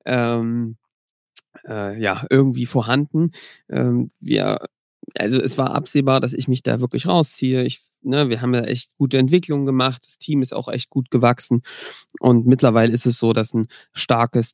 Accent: German